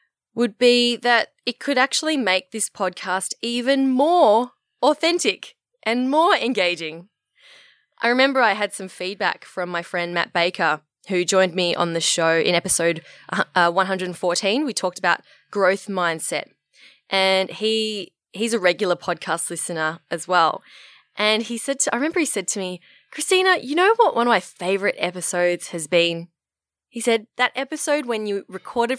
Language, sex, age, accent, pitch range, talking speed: English, female, 20-39, Australian, 175-235 Hz, 160 wpm